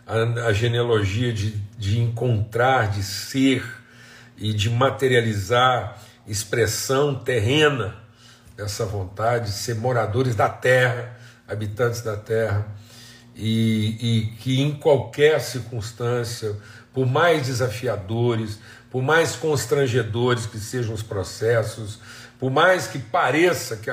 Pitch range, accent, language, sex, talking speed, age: 105-120 Hz, Brazilian, Portuguese, male, 110 wpm, 50-69